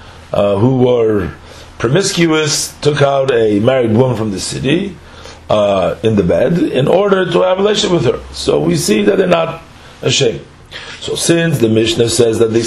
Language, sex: English, male